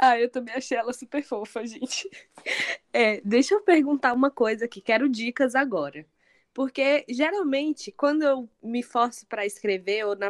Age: 10-29